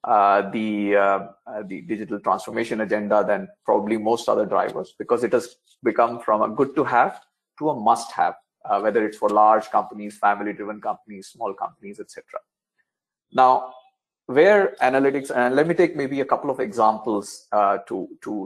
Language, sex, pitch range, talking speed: English, male, 110-170 Hz, 165 wpm